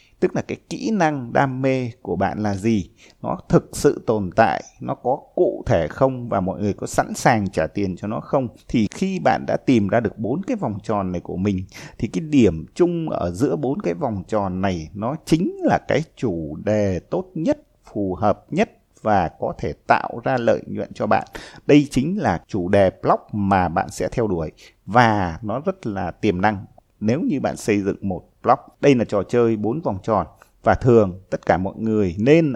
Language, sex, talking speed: Vietnamese, male, 210 wpm